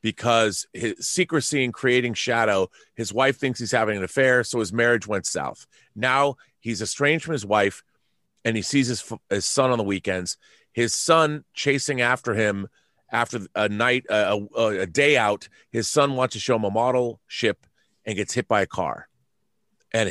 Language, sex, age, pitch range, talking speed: English, male, 30-49, 105-135 Hz, 185 wpm